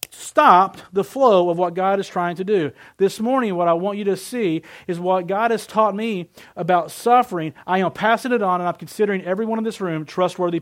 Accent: American